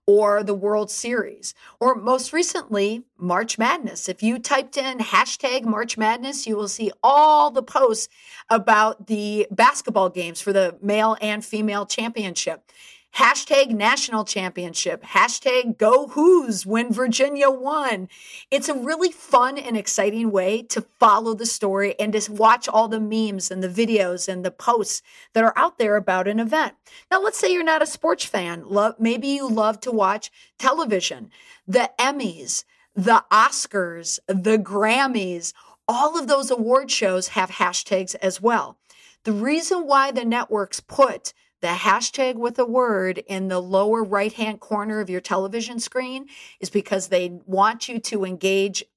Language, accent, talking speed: English, American, 155 wpm